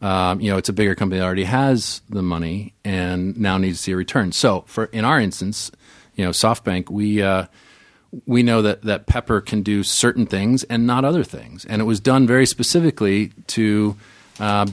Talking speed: 205 wpm